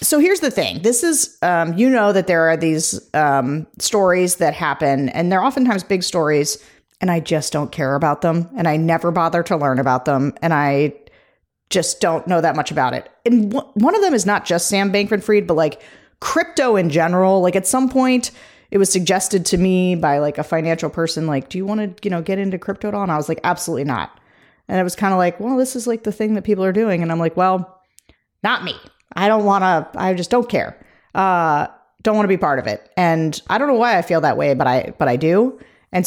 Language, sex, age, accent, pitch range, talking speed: English, female, 40-59, American, 165-210 Hz, 245 wpm